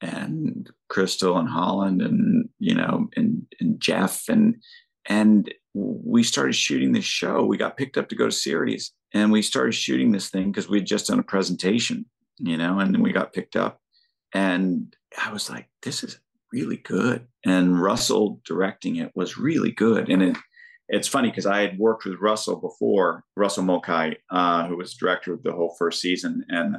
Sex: male